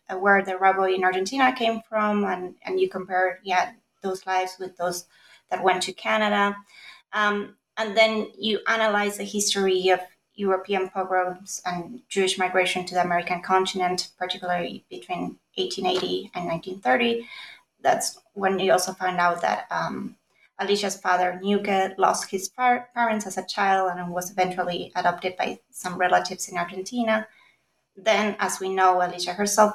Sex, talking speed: female, 145 wpm